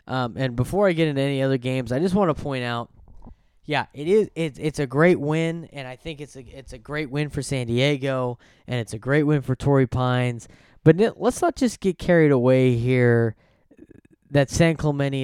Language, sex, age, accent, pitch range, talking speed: English, male, 10-29, American, 125-150 Hz, 215 wpm